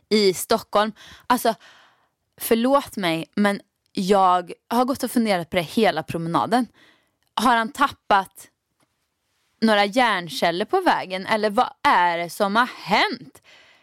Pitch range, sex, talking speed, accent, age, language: 195-255 Hz, female, 125 wpm, native, 20-39, Swedish